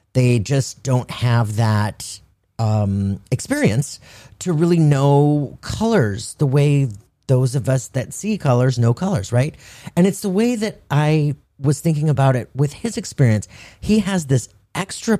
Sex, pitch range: male, 105-145 Hz